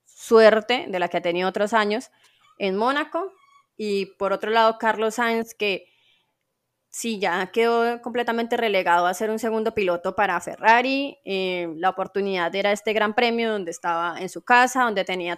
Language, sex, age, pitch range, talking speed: Spanish, female, 20-39, 190-230 Hz, 170 wpm